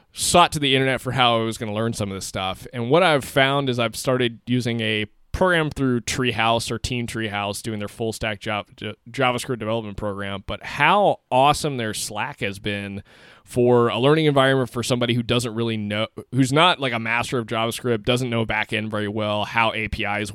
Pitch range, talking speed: 105-130 Hz, 205 wpm